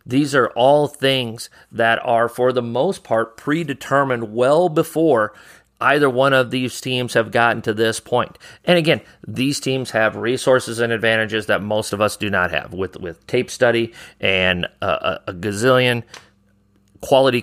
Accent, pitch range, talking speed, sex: American, 110-130 Hz, 165 wpm, male